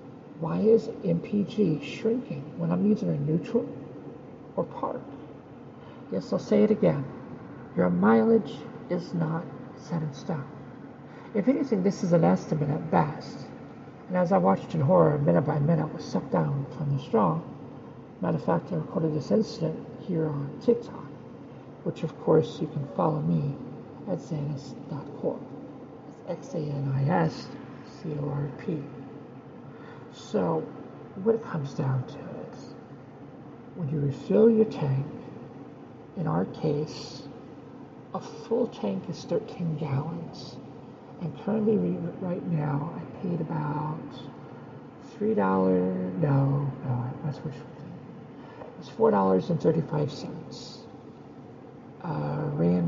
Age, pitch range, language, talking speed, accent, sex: 60-79, 145-190 Hz, English, 115 wpm, American, male